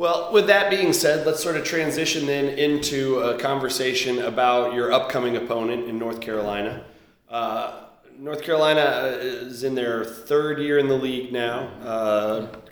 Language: English